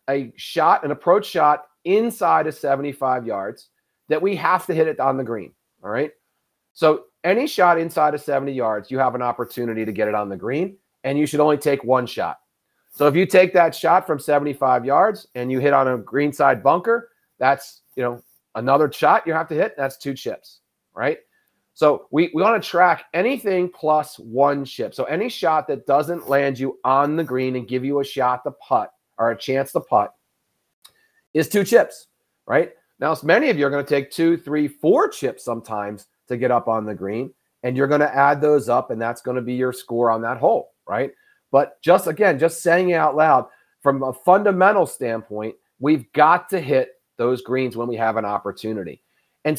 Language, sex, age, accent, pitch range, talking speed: English, male, 40-59, American, 125-165 Hz, 205 wpm